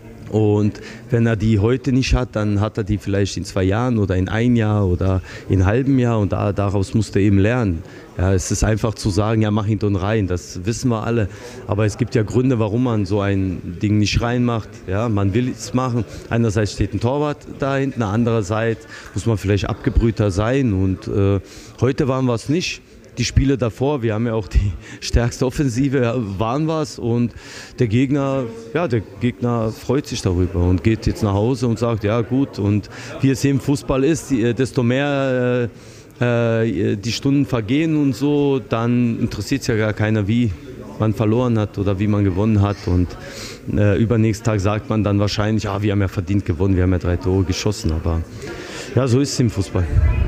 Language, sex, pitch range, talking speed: German, male, 100-125 Hz, 200 wpm